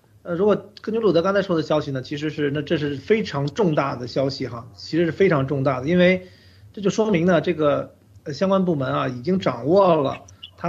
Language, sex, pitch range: Chinese, male, 135-170 Hz